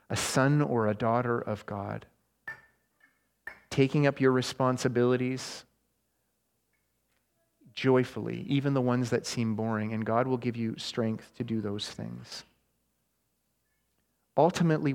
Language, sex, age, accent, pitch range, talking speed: English, male, 30-49, American, 110-140 Hz, 115 wpm